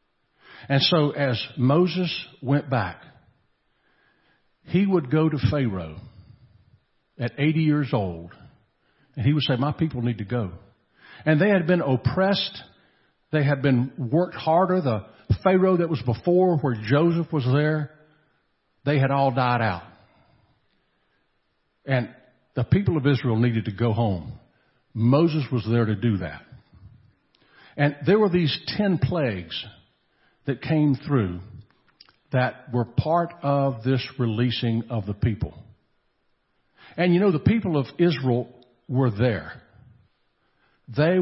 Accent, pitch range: American, 115-150 Hz